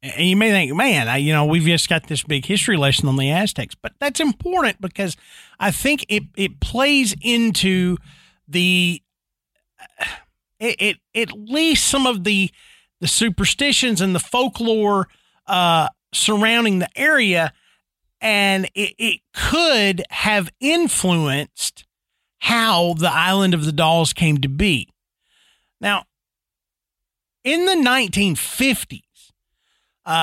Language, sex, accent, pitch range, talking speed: English, male, American, 155-230 Hz, 130 wpm